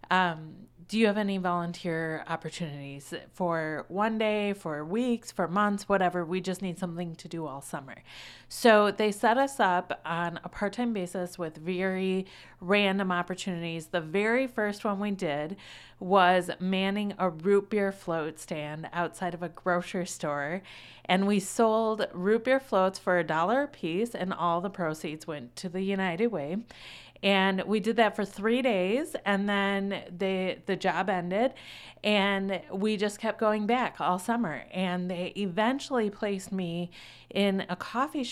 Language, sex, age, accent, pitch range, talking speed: English, female, 30-49, American, 175-210 Hz, 160 wpm